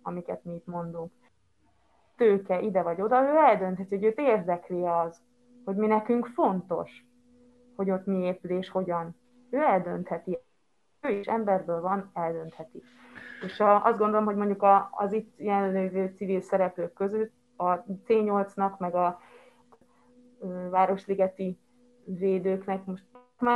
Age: 20-39